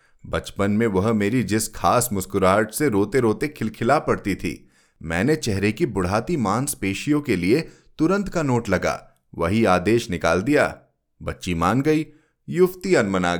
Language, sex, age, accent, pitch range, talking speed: Hindi, male, 30-49, native, 95-135 Hz, 150 wpm